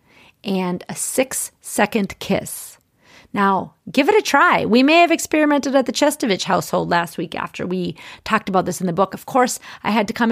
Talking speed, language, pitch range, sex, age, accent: 200 wpm, English, 195-275 Hz, female, 30-49, American